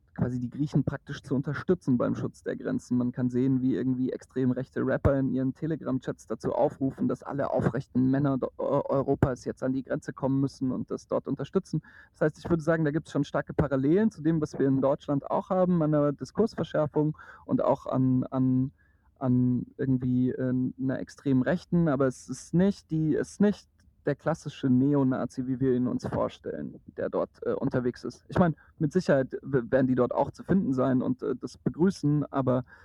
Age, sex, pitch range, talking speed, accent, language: 30-49, male, 130-150 Hz, 190 wpm, German, German